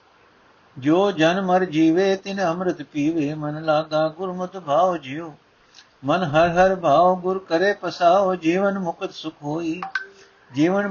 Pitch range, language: 135-170 Hz, Punjabi